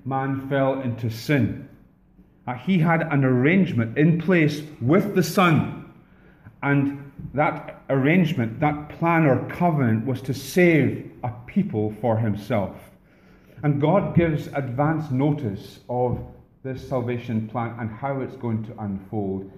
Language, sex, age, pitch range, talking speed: English, male, 40-59, 110-150 Hz, 130 wpm